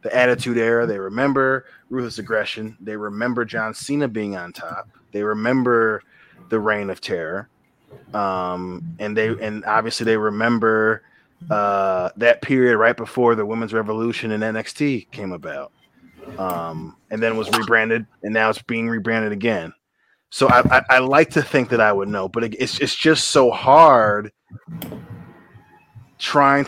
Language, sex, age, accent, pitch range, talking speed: English, male, 20-39, American, 110-150 Hz, 155 wpm